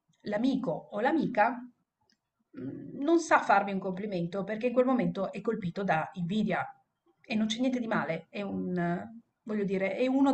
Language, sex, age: Italian, female, 40-59